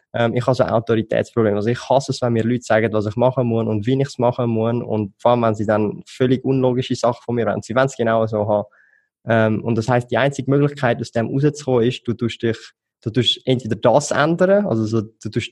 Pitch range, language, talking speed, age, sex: 110-130 Hz, German, 235 wpm, 20-39, male